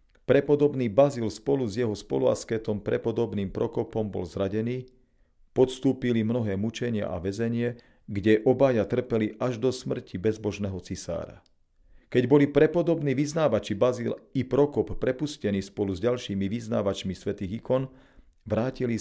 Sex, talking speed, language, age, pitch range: male, 120 wpm, Slovak, 40-59, 100-125 Hz